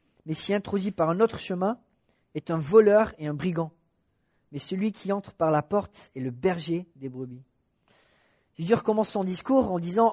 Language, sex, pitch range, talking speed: English, male, 155-205 Hz, 190 wpm